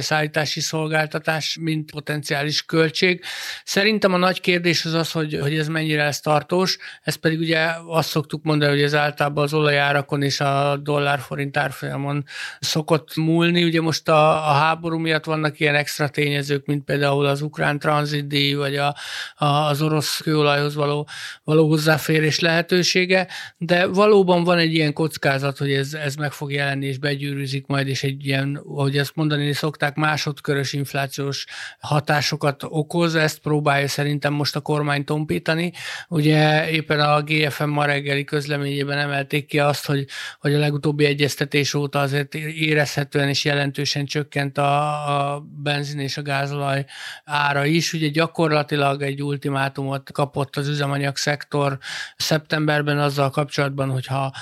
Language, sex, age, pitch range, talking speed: Hungarian, male, 60-79, 140-155 Hz, 145 wpm